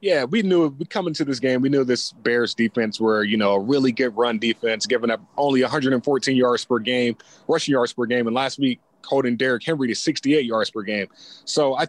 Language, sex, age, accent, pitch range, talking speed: English, male, 20-39, American, 120-155 Hz, 225 wpm